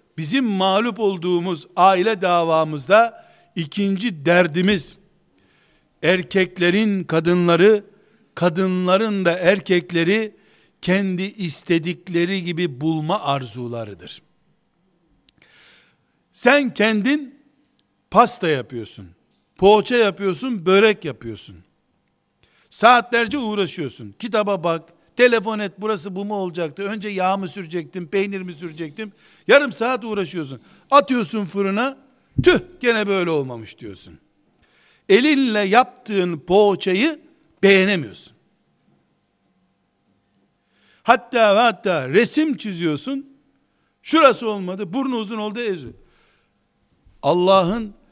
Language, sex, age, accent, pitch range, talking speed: Turkish, male, 60-79, native, 170-220 Hz, 85 wpm